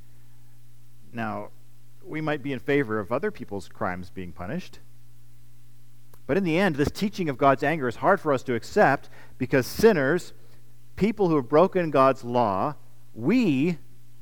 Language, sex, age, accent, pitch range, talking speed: English, male, 40-59, American, 115-135 Hz, 150 wpm